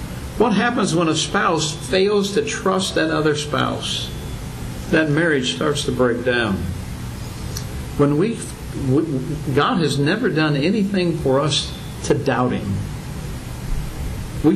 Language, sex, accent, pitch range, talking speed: English, male, American, 145-200 Hz, 125 wpm